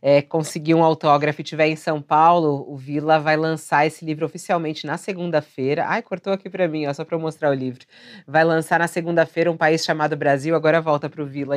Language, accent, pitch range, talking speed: Portuguese, Brazilian, 160-190 Hz, 225 wpm